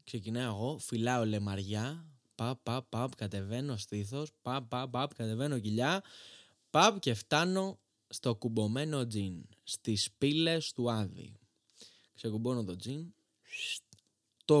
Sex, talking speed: male, 115 wpm